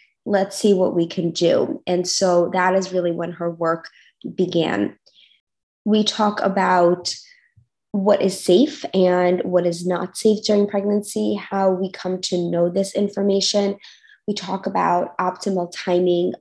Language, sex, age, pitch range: English, female, 20-39, 180-195 Hz